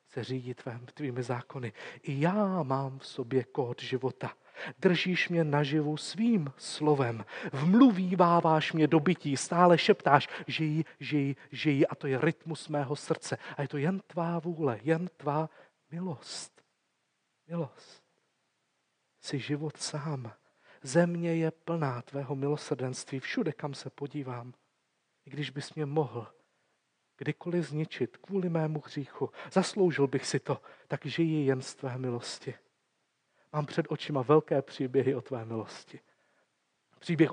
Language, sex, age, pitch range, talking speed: Czech, male, 40-59, 135-165 Hz, 135 wpm